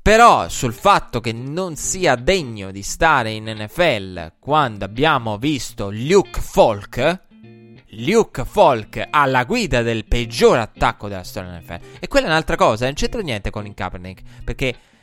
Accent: native